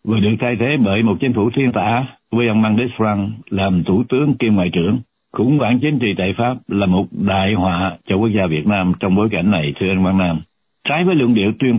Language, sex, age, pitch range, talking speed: Vietnamese, male, 60-79, 90-115 Hz, 245 wpm